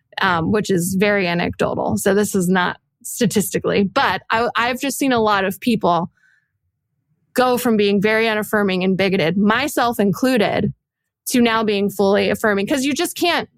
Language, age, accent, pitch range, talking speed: English, 20-39, American, 195-245 Hz, 160 wpm